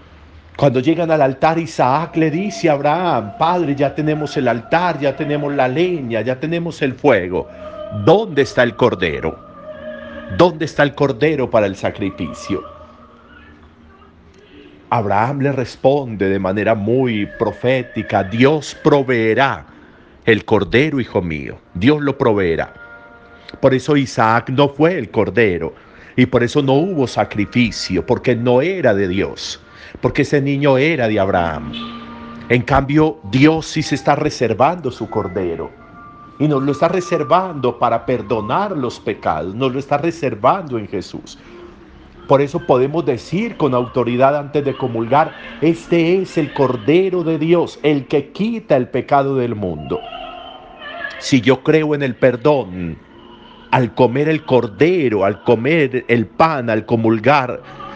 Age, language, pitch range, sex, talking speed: 50-69, Spanish, 115-155 Hz, male, 140 wpm